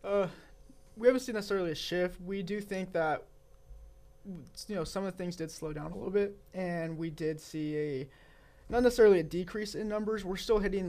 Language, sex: English, male